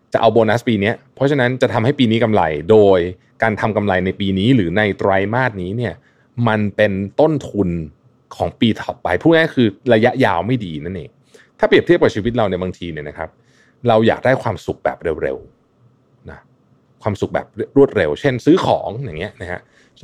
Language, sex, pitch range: Thai, male, 95-130 Hz